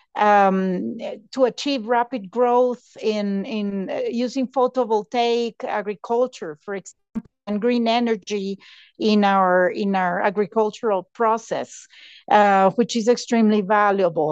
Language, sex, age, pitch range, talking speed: English, female, 50-69, 210-250 Hz, 115 wpm